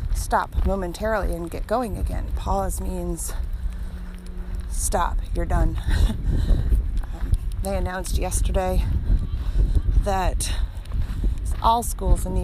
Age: 30-49